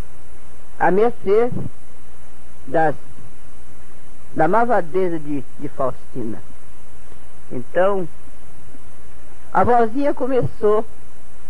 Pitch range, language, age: 175-275 Hz, Portuguese, 40-59